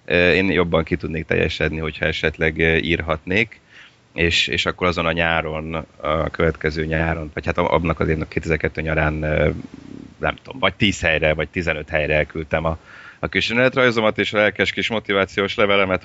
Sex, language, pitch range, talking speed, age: male, Hungarian, 80-95 Hz, 165 wpm, 30-49